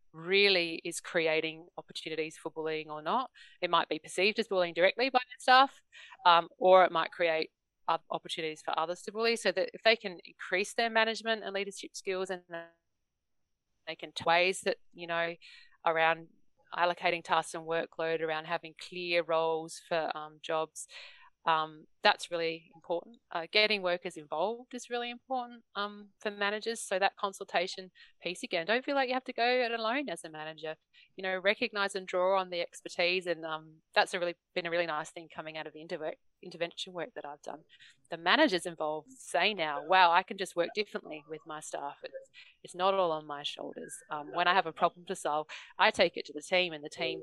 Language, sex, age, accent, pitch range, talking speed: English, female, 30-49, Australian, 160-200 Hz, 200 wpm